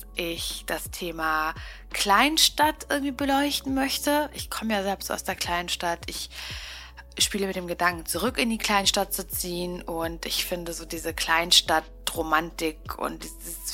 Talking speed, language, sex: 150 wpm, German, female